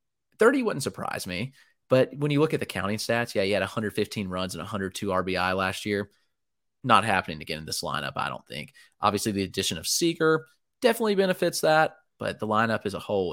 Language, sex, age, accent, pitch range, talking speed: English, male, 30-49, American, 95-125 Hz, 205 wpm